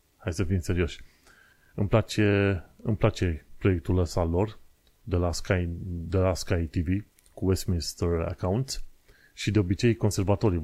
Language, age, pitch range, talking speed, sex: Romanian, 30-49, 85-105 Hz, 140 wpm, male